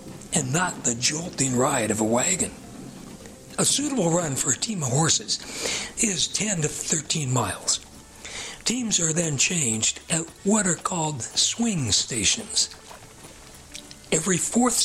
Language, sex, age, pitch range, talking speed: English, male, 60-79, 135-210 Hz, 135 wpm